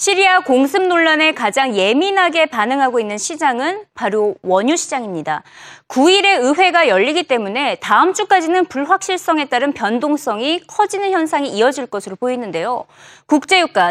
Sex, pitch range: female, 245-370 Hz